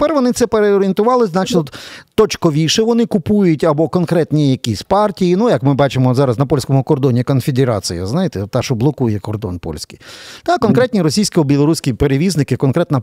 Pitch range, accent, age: 135-190 Hz, native, 50-69